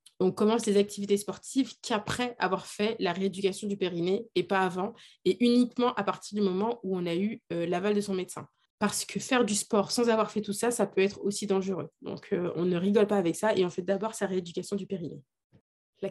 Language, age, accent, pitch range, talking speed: French, 20-39, French, 175-210 Hz, 230 wpm